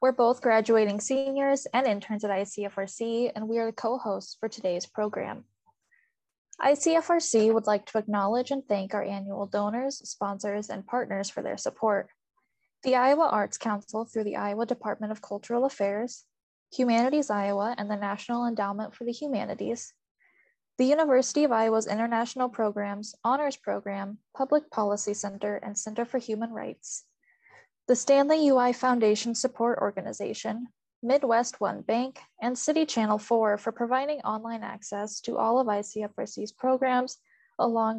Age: 10-29